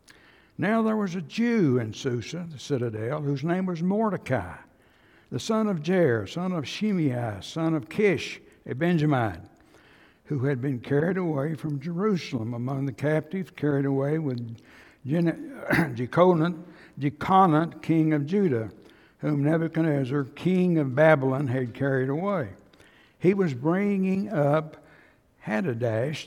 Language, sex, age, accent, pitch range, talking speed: English, male, 60-79, American, 130-170 Hz, 125 wpm